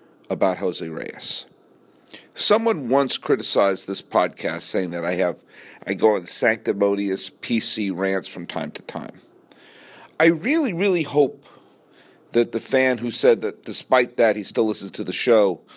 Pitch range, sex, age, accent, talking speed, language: 115-165 Hz, male, 50-69, American, 150 wpm, English